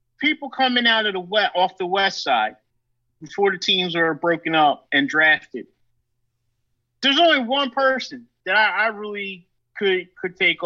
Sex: male